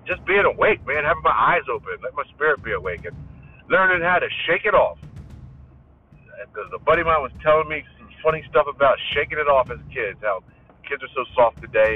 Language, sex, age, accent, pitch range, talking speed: English, male, 50-69, American, 105-170 Hz, 215 wpm